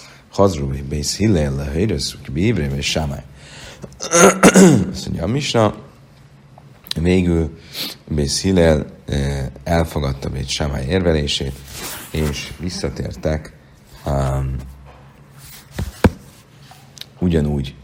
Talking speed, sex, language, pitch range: 70 wpm, male, Hungarian, 70-85 Hz